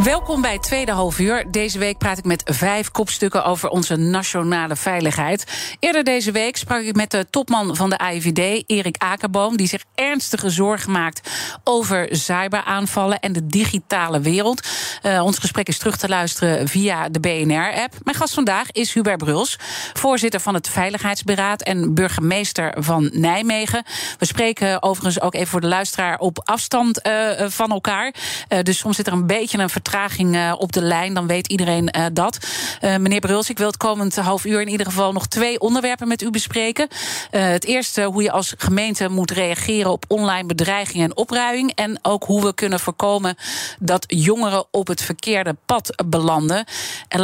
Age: 40-59